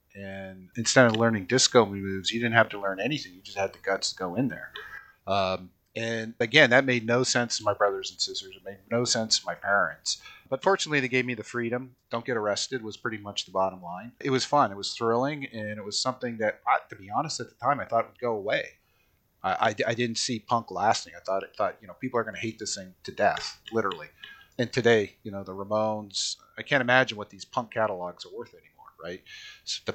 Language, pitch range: English, 100-125 Hz